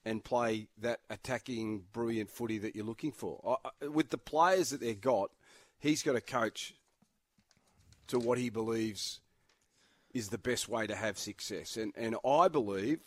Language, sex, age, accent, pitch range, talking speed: English, male, 40-59, Australian, 105-125 Hz, 160 wpm